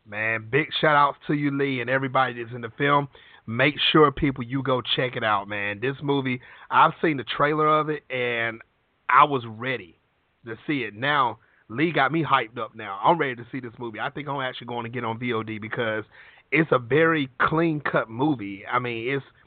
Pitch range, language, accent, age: 120-140 Hz, English, American, 30-49